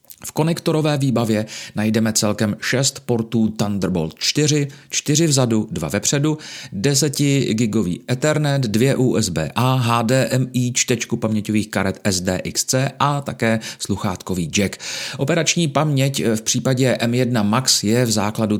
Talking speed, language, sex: 115 wpm, Czech, male